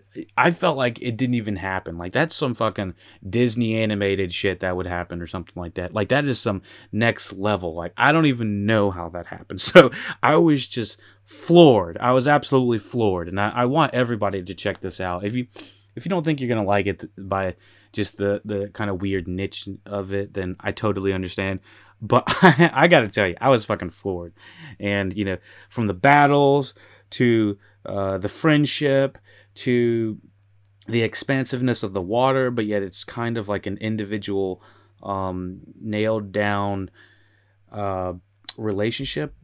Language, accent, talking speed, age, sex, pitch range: English, American, 180 wpm, 30-49, male, 95-120 Hz